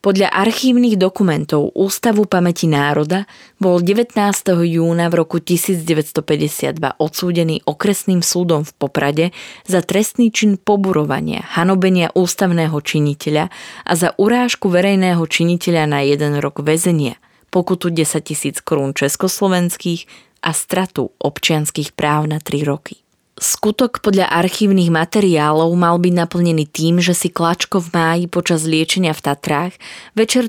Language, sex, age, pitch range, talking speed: Slovak, female, 20-39, 155-195 Hz, 120 wpm